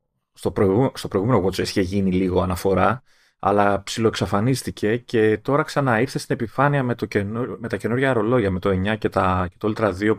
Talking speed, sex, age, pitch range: 190 wpm, male, 30-49, 100-135 Hz